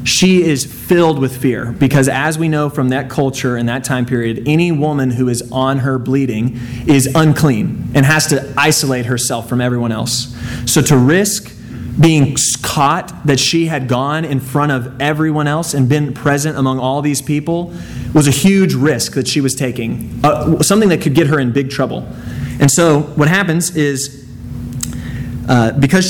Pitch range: 125-155 Hz